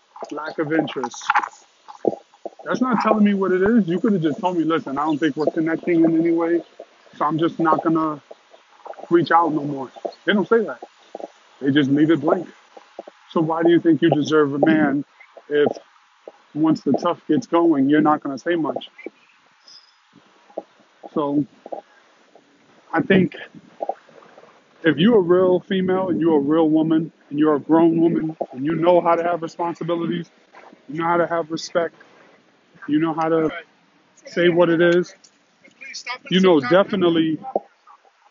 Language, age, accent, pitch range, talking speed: English, 20-39, American, 155-180 Hz, 165 wpm